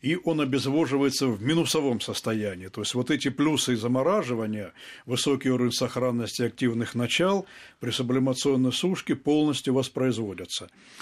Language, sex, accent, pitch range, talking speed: Russian, male, native, 120-150 Hz, 125 wpm